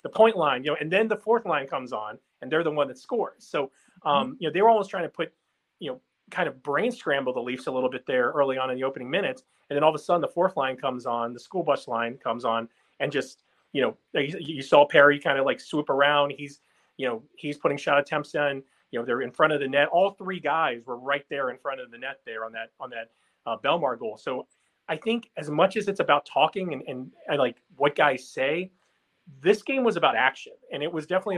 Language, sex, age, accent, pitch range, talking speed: English, male, 30-49, American, 135-185 Hz, 260 wpm